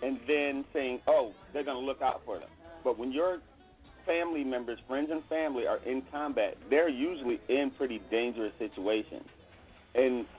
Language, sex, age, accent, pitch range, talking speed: English, male, 40-59, American, 130-185 Hz, 170 wpm